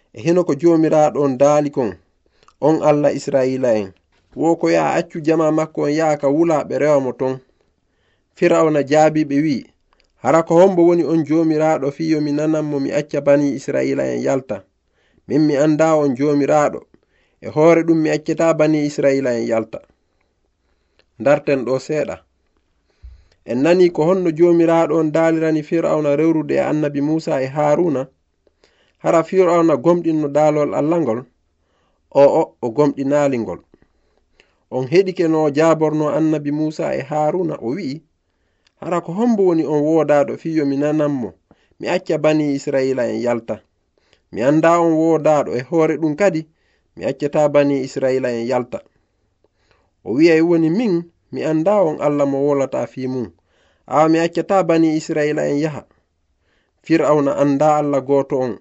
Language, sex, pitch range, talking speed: English, male, 135-160 Hz, 140 wpm